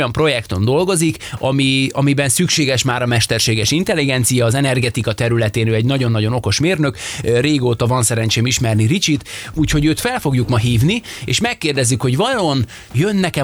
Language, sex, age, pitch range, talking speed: Hungarian, male, 20-39, 115-150 Hz, 150 wpm